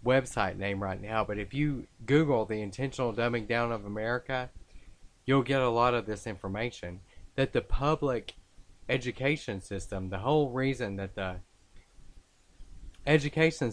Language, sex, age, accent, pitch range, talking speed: English, male, 30-49, American, 95-120 Hz, 140 wpm